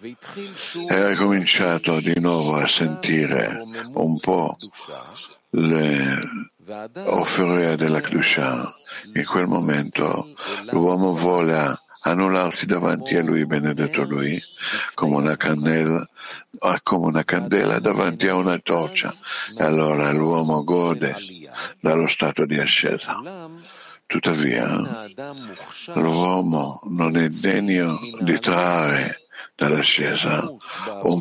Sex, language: male, Italian